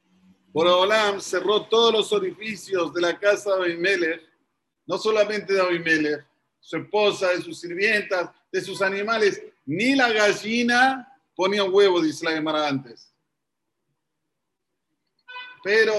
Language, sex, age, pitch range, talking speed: Spanish, male, 40-59, 175-230 Hz, 120 wpm